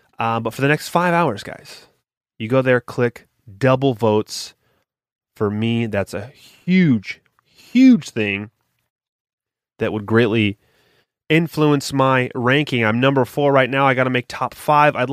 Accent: American